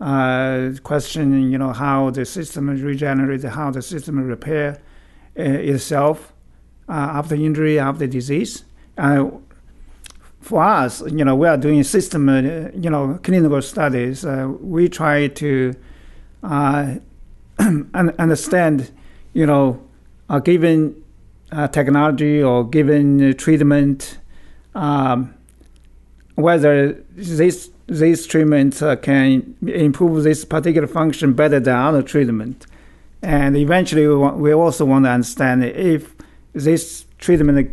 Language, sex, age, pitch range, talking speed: English, male, 50-69, 130-155 Hz, 120 wpm